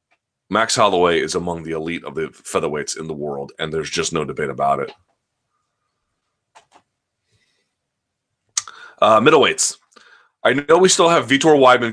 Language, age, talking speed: English, 30-49, 140 wpm